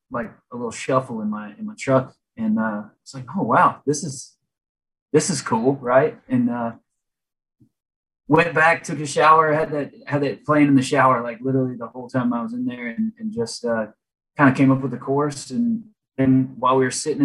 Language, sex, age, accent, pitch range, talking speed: English, male, 20-39, American, 125-160 Hz, 215 wpm